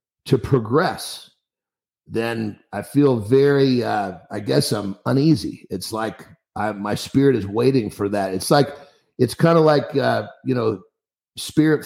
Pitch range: 105-140 Hz